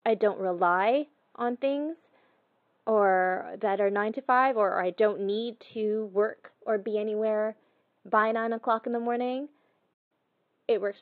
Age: 20-39